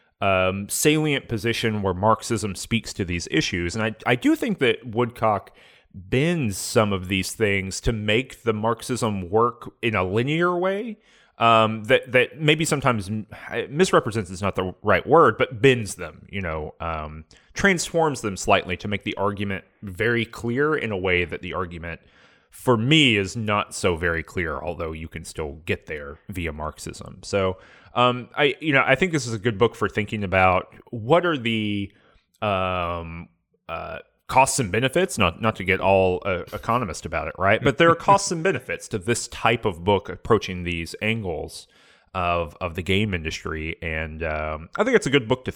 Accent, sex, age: American, male, 30-49